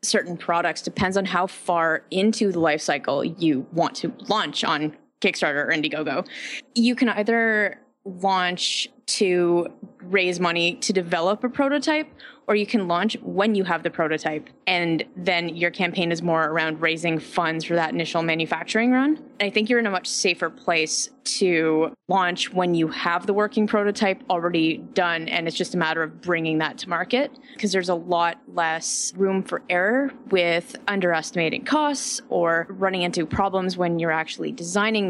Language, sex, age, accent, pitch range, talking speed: English, female, 20-39, American, 165-220 Hz, 170 wpm